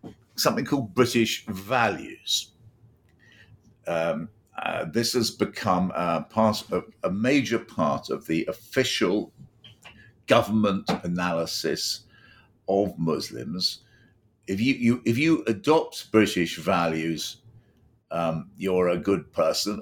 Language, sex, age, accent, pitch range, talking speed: English, male, 50-69, British, 100-120 Hz, 95 wpm